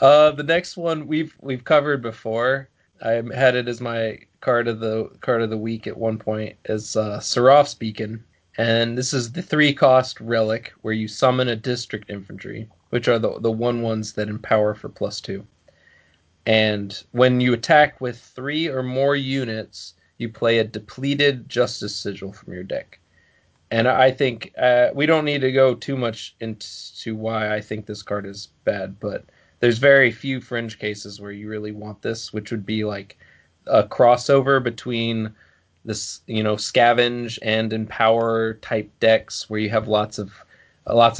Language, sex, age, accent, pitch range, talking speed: English, male, 20-39, American, 105-125 Hz, 175 wpm